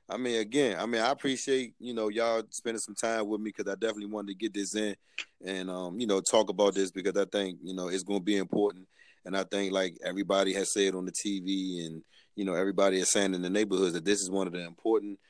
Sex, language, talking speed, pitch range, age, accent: male, English, 260 wpm, 95-110 Hz, 30-49, American